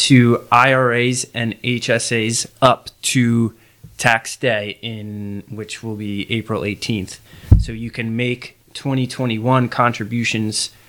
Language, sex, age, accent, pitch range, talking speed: English, male, 20-39, American, 110-125 Hz, 110 wpm